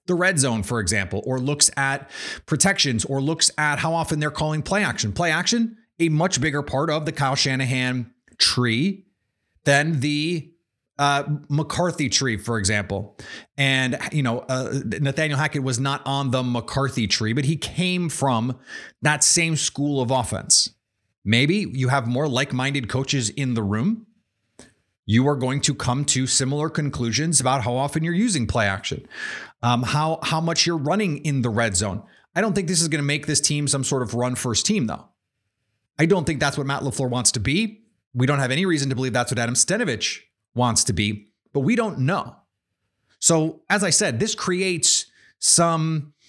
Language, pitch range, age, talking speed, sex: English, 125-165 Hz, 30-49, 185 wpm, male